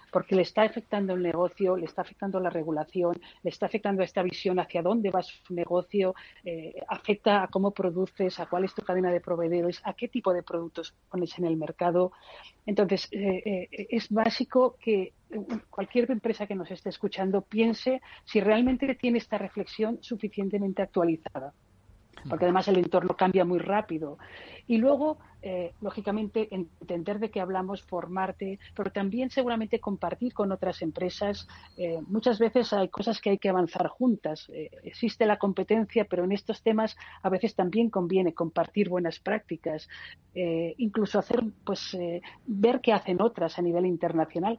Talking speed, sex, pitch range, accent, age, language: 165 wpm, female, 175-215 Hz, Spanish, 40-59, Spanish